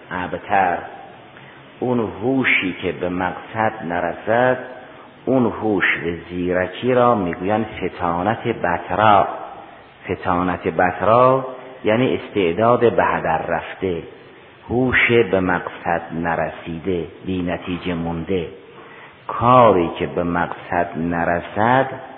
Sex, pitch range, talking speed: male, 90-120 Hz, 90 wpm